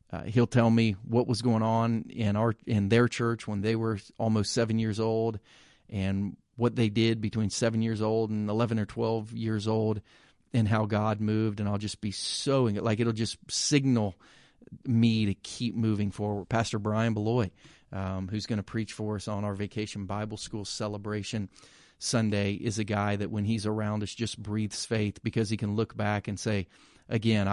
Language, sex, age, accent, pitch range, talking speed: English, male, 40-59, American, 100-115 Hz, 195 wpm